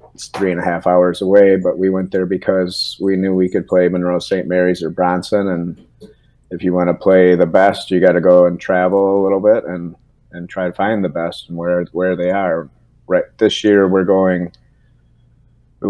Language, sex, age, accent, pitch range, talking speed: English, male, 30-49, American, 85-95 Hz, 215 wpm